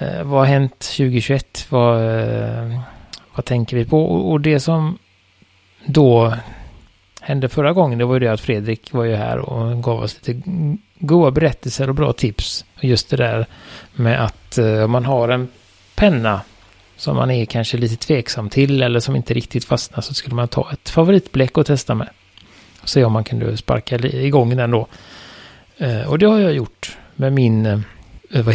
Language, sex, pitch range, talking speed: Swedish, male, 110-135 Hz, 175 wpm